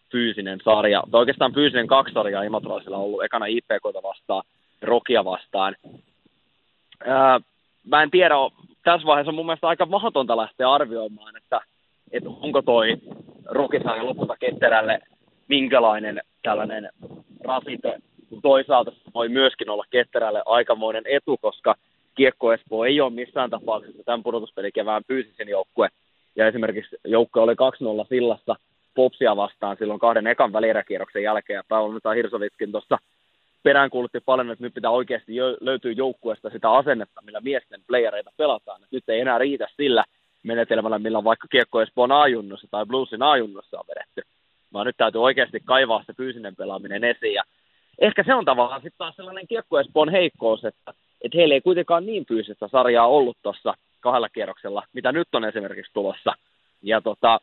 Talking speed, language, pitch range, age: 150 wpm, Finnish, 110-135 Hz, 20-39